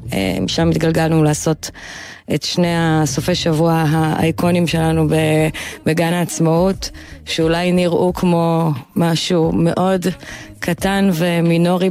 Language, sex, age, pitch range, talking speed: Hebrew, female, 20-39, 160-175 Hz, 90 wpm